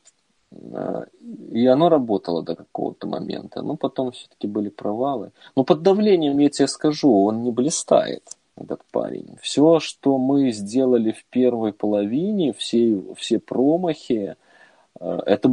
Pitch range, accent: 105-145 Hz, native